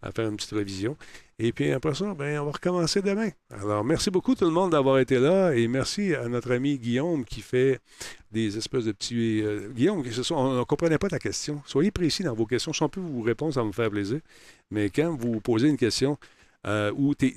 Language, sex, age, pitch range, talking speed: French, male, 50-69, 105-150 Hz, 220 wpm